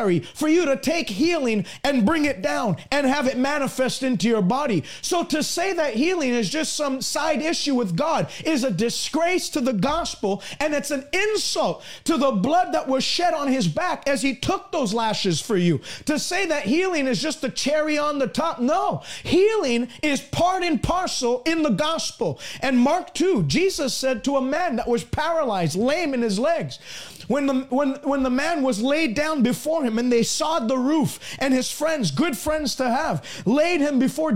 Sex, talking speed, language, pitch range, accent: male, 200 wpm, English, 245-325 Hz, American